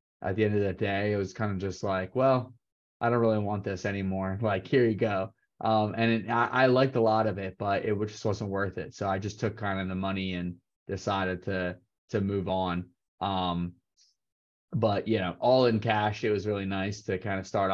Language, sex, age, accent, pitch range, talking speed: English, male, 20-39, American, 95-110 Hz, 230 wpm